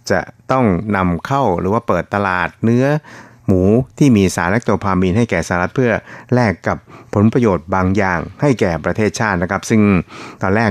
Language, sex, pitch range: Thai, male, 90-115 Hz